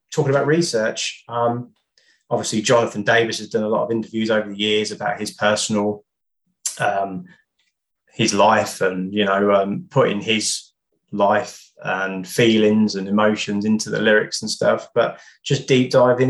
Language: English